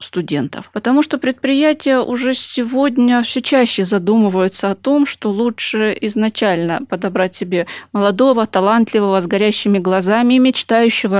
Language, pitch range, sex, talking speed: Russian, 190-245 Hz, female, 120 wpm